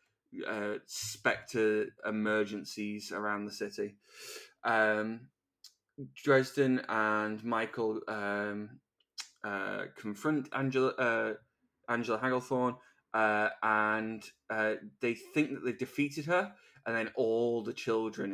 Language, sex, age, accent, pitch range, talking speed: English, male, 10-29, British, 105-125 Hz, 100 wpm